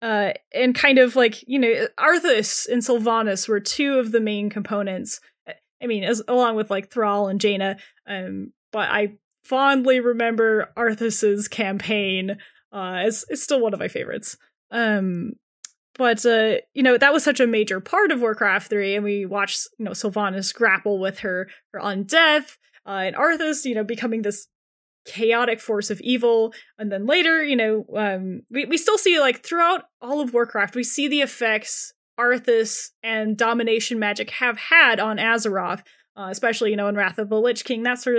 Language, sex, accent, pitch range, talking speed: English, female, American, 210-255 Hz, 180 wpm